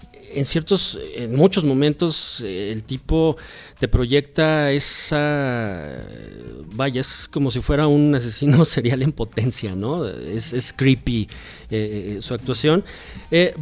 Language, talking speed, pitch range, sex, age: Spanish, 125 wpm, 120-150 Hz, male, 40-59